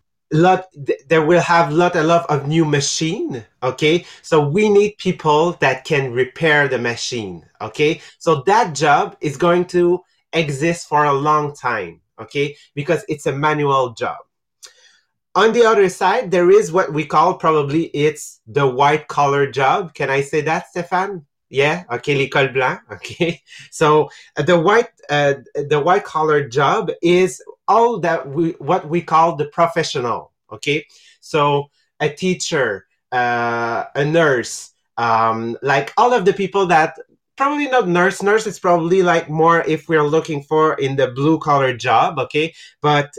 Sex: male